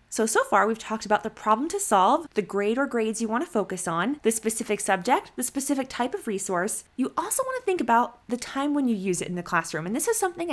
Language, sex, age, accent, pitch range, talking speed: English, female, 20-39, American, 190-245 Hz, 250 wpm